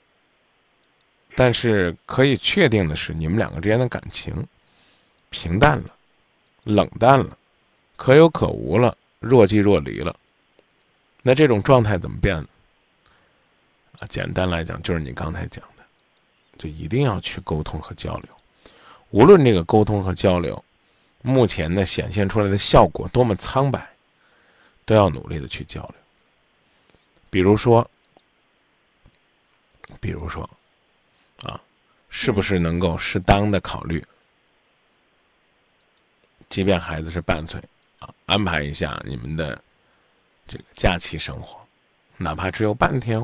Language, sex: Chinese, male